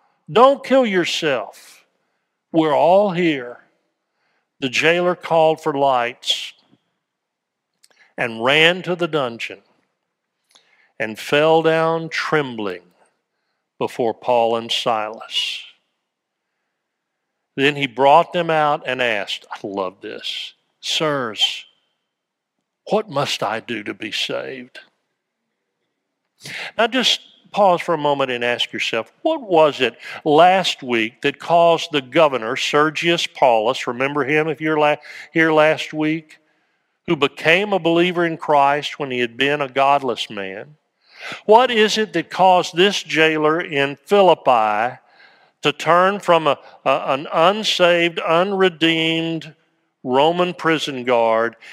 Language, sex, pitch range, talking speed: English, male, 135-170 Hz, 120 wpm